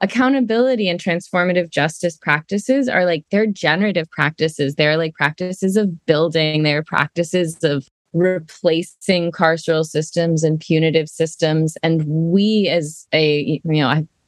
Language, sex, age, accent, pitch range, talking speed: English, female, 20-39, American, 155-185 Hz, 130 wpm